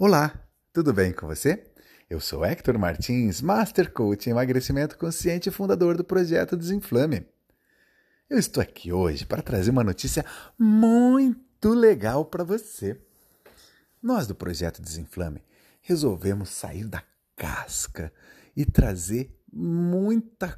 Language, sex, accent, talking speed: Portuguese, male, Brazilian, 120 wpm